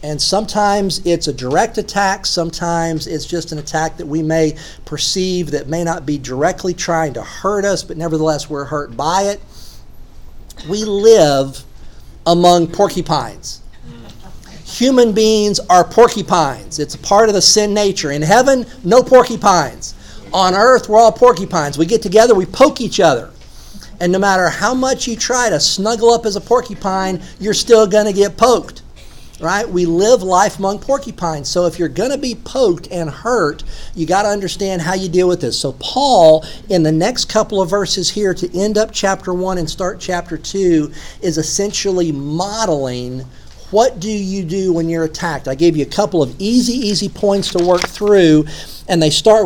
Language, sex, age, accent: English, male, 50-69, American